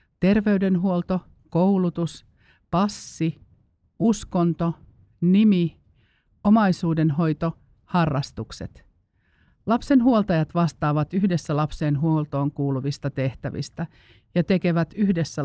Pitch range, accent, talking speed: 140-180 Hz, native, 65 wpm